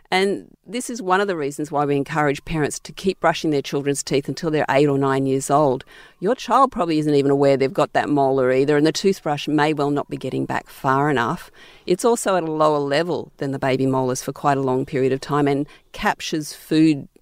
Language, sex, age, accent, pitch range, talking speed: English, female, 50-69, Australian, 140-170 Hz, 230 wpm